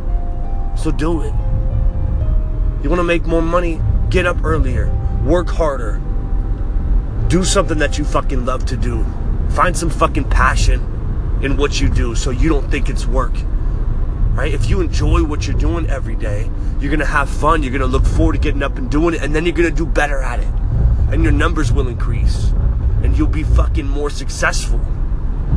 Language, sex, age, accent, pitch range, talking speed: English, male, 30-49, American, 95-125 Hz, 190 wpm